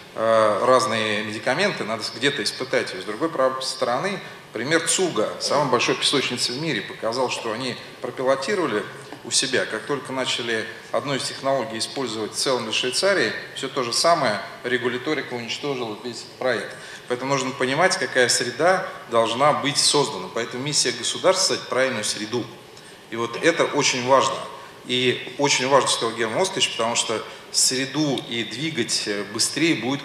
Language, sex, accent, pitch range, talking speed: Russian, male, native, 120-145 Hz, 145 wpm